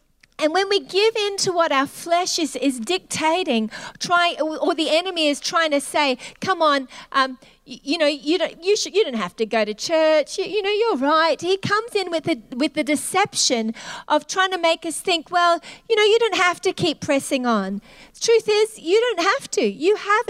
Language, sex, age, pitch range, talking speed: English, female, 40-59, 295-380 Hz, 220 wpm